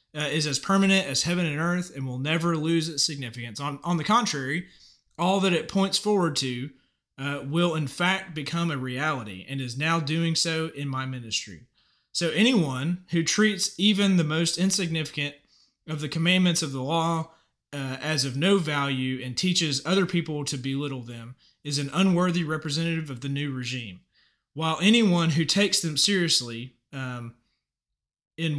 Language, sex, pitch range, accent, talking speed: English, male, 135-170 Hz, American, 170 wpm